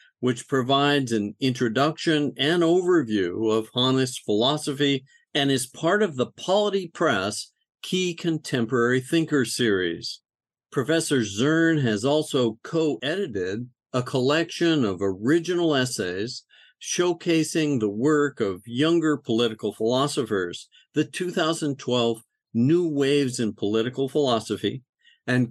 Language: English